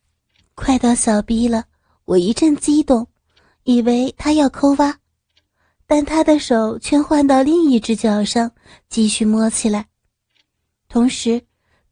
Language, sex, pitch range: Chinese, female, 220-260 Hz